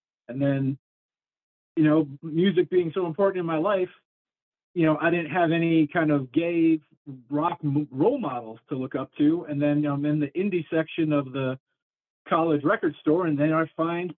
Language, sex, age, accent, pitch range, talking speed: English, male, 40-59, American, 130-160 Hz, 180 wpm